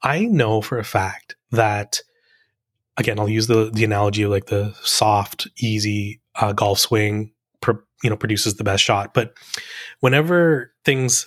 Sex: male